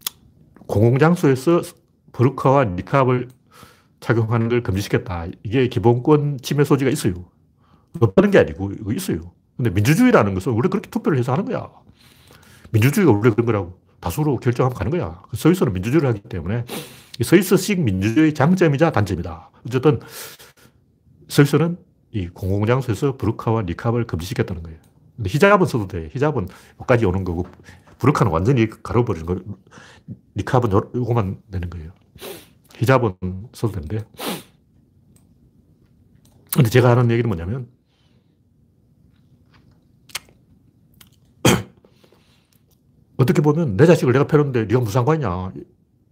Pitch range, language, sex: 100-140 Hz, Korean, male